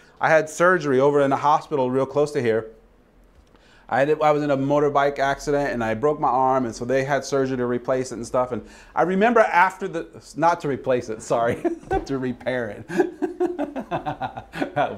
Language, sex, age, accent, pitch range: Japanese, male, 30-49, American, 130-190 Hz